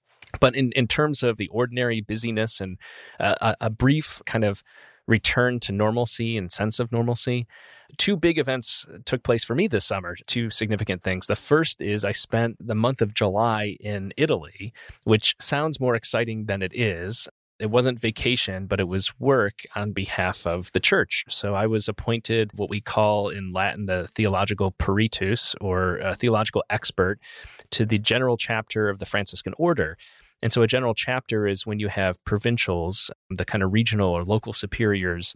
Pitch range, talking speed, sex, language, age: 100-120 Hz, 175 wpm, male, English, 30-49